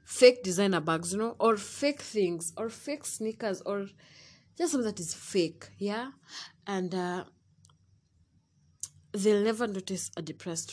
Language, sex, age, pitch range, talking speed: English, female, 20-39, 185-255 Hz, 140 wpm